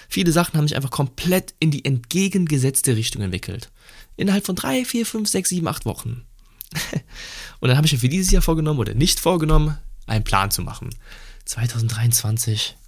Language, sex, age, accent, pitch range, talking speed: German, male, 20-39, German, 105-130 Hz, 170 wpm